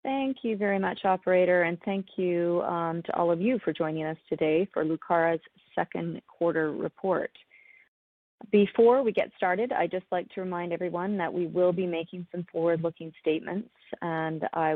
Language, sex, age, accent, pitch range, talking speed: English, female, 30-49, American, 160-190 Hz, 170 wpm